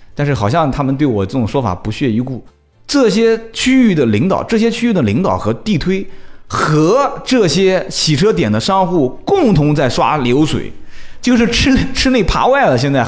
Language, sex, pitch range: Chinese, male, 110-185 Hz